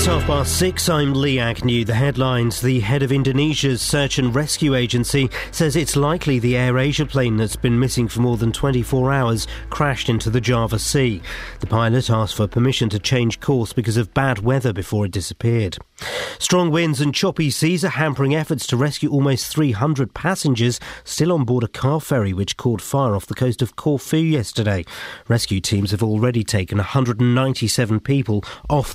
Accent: British